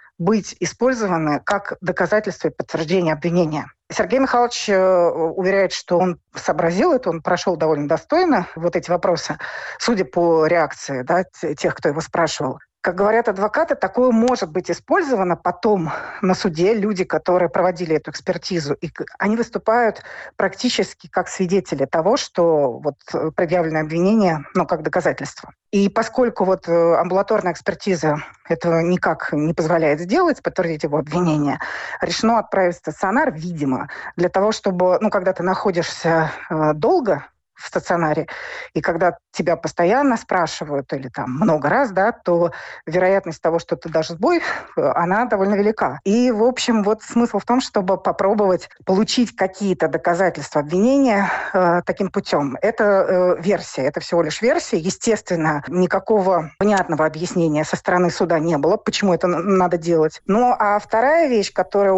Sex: female